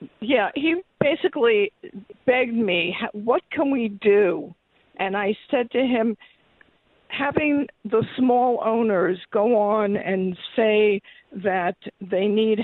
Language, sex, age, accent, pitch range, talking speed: English, female, 50-69, American, 190-230 Hz, 125 wpm